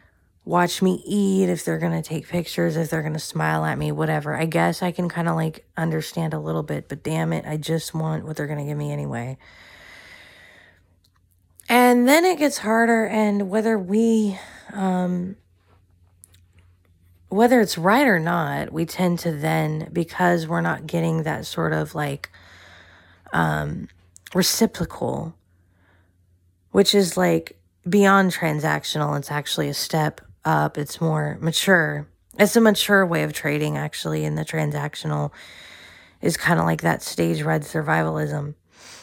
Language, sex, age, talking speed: English, female, 20-39, 155 wpm